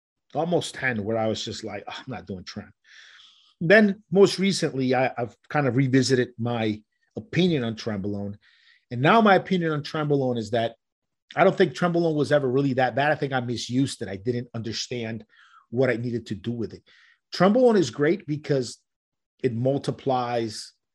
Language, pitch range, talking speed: English, 120-160 Hz, 180 wpm